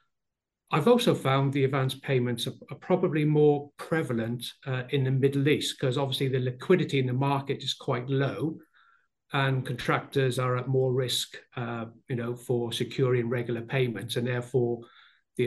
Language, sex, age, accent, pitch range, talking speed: English, male, 50-69, British, 120-140 Hz, 160 wpm